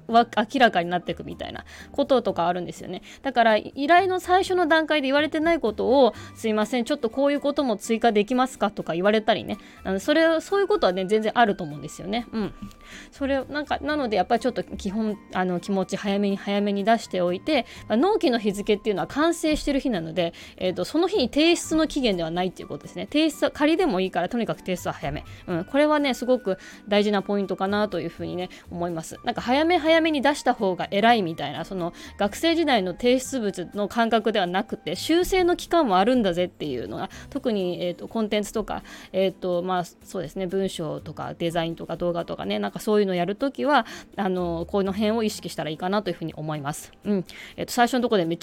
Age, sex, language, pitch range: 20-39, female, Japanese, 185-270 Hz